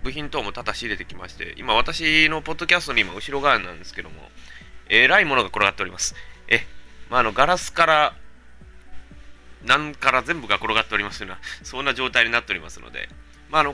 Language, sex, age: Japanese, male, 20-39